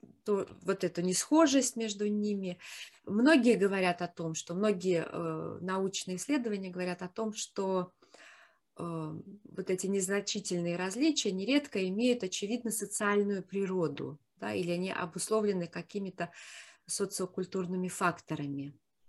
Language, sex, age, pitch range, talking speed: Russian, female, 30-49, 180-225 Hz, 110 wpm